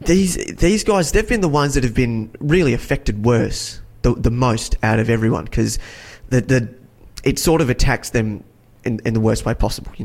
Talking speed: 205 wpm